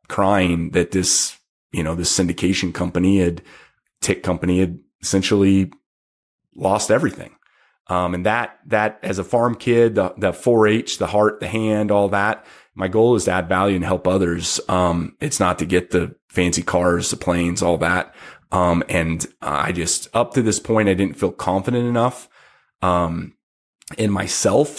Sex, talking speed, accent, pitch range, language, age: male, 165 wpm, American, 90-110 Hz, English, 30-49